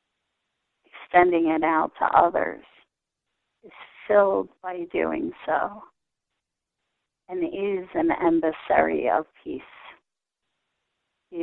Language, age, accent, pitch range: English, 40-59, American, 165-260 Hz